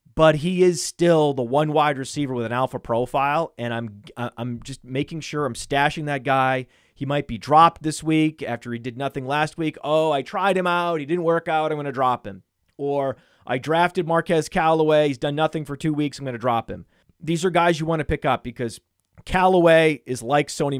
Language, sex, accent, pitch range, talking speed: English, male, American, 125-155 Hz, 220 wpm